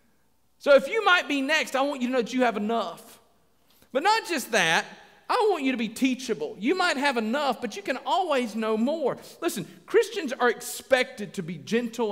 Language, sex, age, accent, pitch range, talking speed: English, male, 40-59, American, 185-260 Hz, 210 wpm